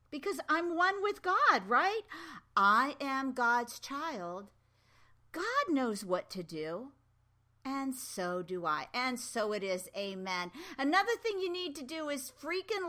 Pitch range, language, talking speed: 175-275 Hz, English, 150 wpm